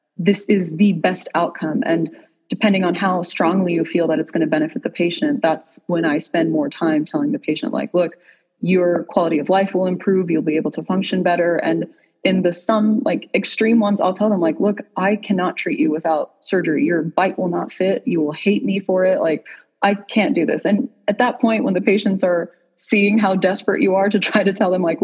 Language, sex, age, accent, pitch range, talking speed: English, female, 20-39, American, 175-215 Hz, 230 wpm